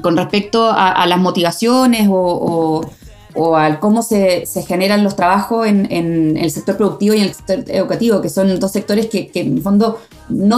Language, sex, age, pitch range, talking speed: Spanish, female, 20-39, 180-240 Hz, 205 wpm